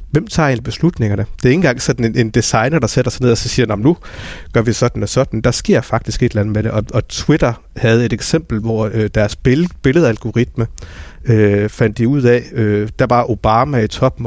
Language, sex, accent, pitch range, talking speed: Danish, male, native, 110-135 Hz, 225 wpm